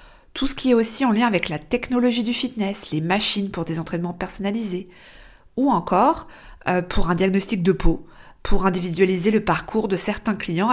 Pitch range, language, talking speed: 175-235 Hz, French, 185 wpm